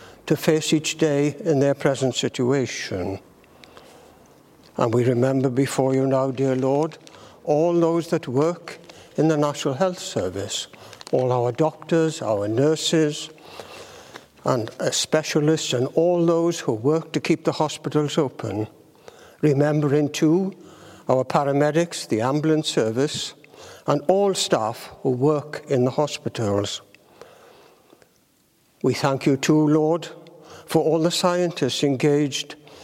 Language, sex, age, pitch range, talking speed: English, male, 60-79, 135-160 Hz, 120 wpm